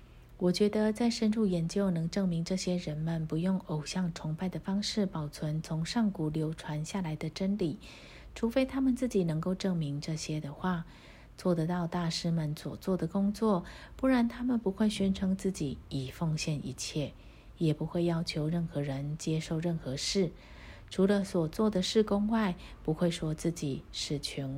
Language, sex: Chinese, female